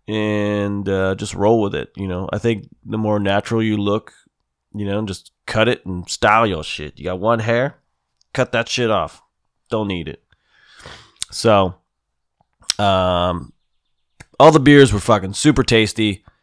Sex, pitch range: male, 95-115 Hz